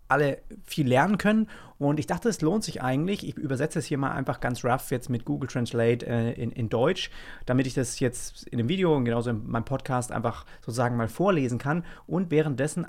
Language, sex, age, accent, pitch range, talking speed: German, male, 30-49, German, 115-145 Hz, 215 wpm